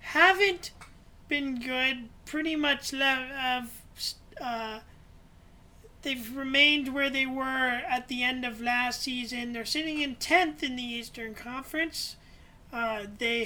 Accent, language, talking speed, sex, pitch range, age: American, English, 125 wpm, male, 225-270 Hz, 30-49